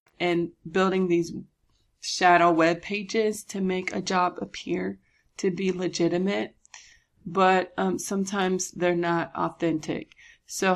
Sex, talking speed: female, 115 wpm